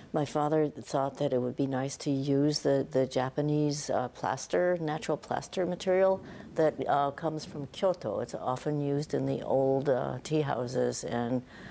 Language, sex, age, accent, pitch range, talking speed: English, female, 60-79, American, 130-150 Hz, 170 wpm